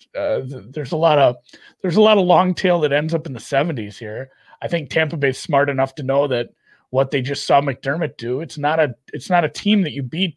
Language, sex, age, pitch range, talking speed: English, male, 30-49, 125-165 Hz, 250 wpm